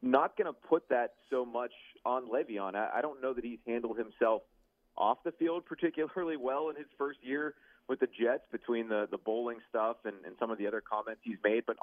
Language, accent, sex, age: English, American, male, 30-49